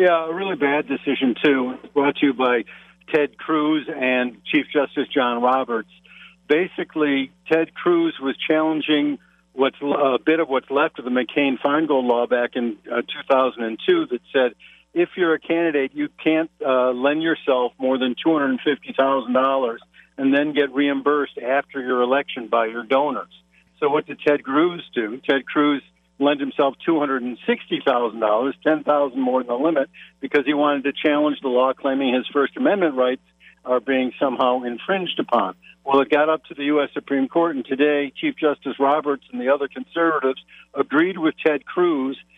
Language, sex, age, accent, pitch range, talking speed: English, male, 60-79, American, 130-155 Hz, 160 wpm